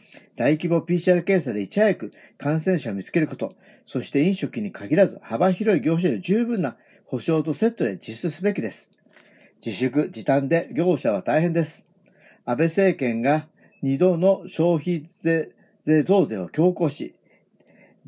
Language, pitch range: Japanese, 160-205 Hz